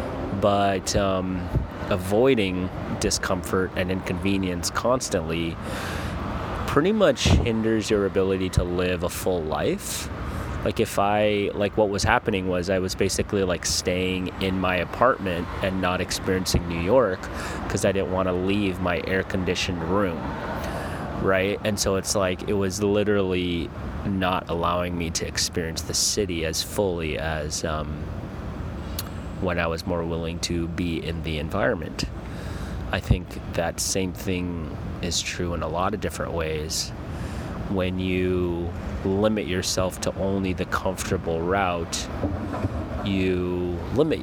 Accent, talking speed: American, 135 wpm